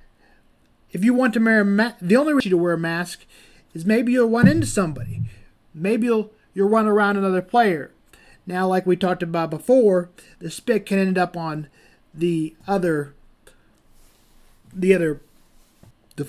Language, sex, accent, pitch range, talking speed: English, male, American, 165-235 Hz, 165 wpm